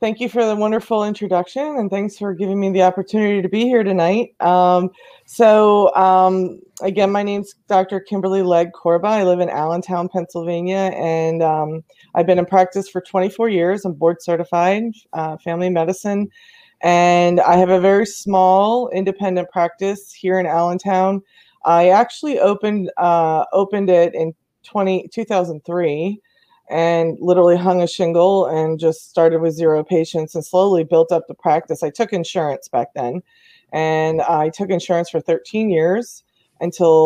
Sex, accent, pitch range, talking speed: female, American, 165-195 Hz, 155 wpm